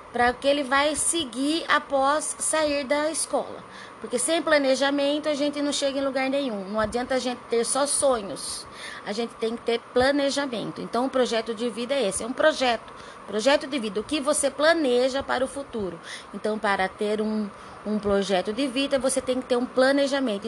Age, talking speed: 20-39, 195 wpm